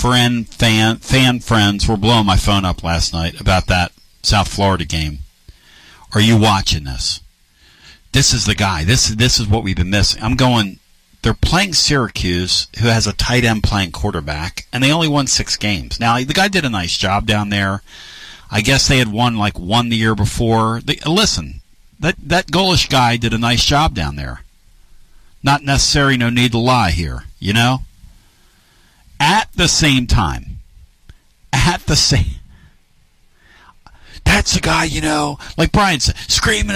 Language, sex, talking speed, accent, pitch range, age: English, male, 170 wpm, American, 95-145 Hz, 50-69